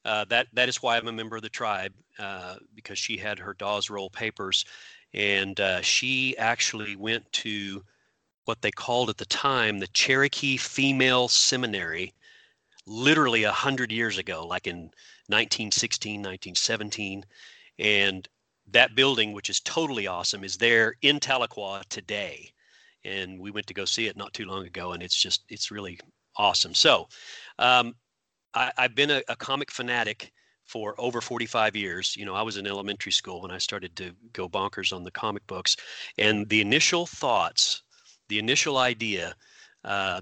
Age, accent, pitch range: 40-59, American, 100-120 Hz